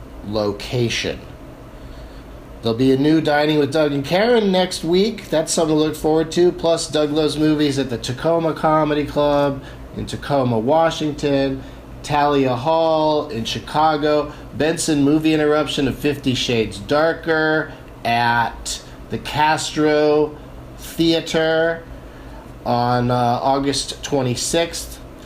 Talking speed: 115 wpm